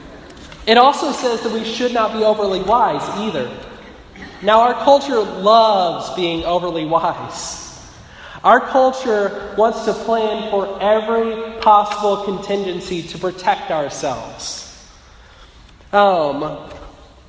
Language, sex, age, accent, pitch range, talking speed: English, male, 30-49, American, 200-230 Hz, 110 wpm